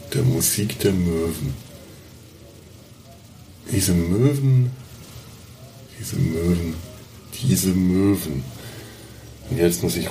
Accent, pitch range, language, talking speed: German, 90-125 Hz, German, 85 wpm